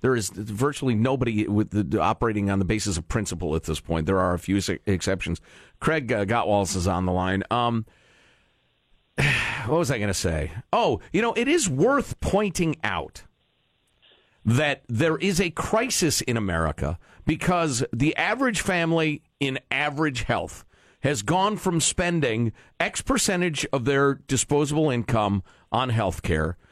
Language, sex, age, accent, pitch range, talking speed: English, male, 50-69, American, 115-185 Hz, 150 wpm